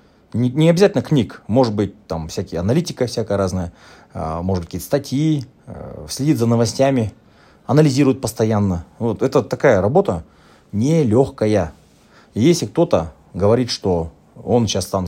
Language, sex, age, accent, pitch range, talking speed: Russian, male, 30-49, native, 90-125 Hz, 125 wpm